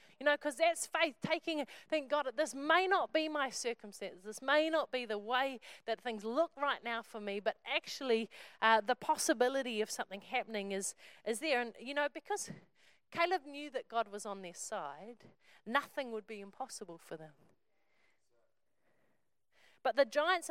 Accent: Australian